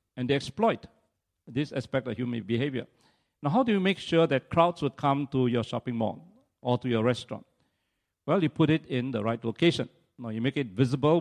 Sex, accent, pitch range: male, Malaysian, 120-160 Hz